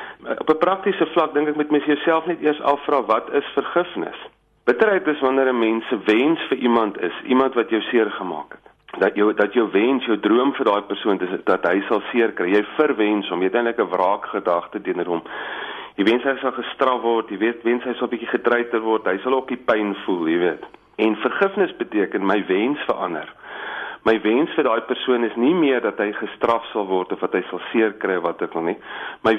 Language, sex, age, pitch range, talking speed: English, male, 40-59, 110-150 Hz, 215 wpm